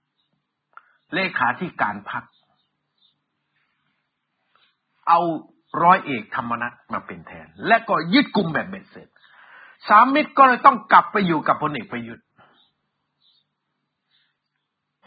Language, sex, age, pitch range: Thai, male, 60-79, 190-260 Hz